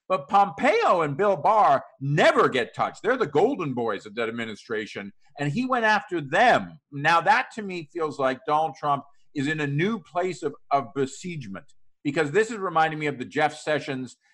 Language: English